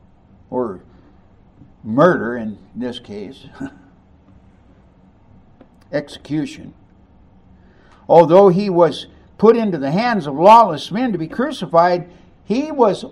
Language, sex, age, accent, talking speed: English, male, 60-79, American, 95 wpm